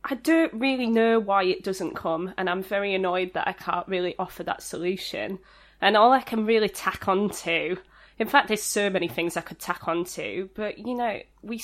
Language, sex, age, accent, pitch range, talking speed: English, female, 20-39, British, 170-210 Hz, 215 wpm